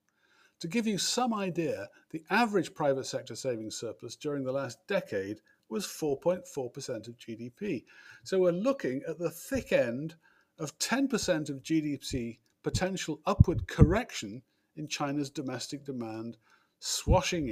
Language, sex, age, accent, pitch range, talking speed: English, male, 50-69, British, 125-175 Hz, 130 wpm